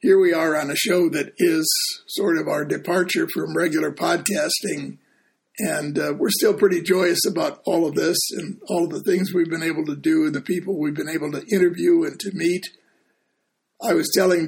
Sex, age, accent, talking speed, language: male, 60-79, American, 205 wpm, English